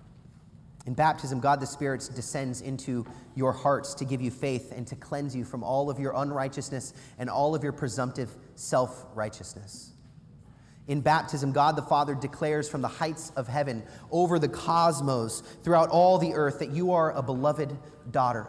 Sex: male